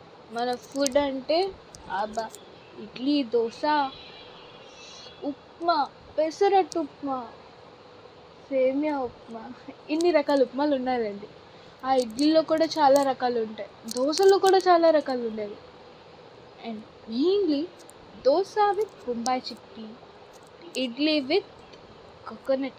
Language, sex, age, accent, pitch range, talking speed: Telugu, female, 20-39, native, 245-350 Hz, 95 wpm